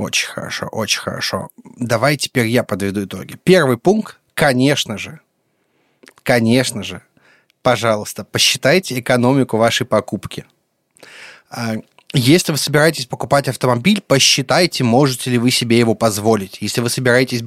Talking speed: 120 wpm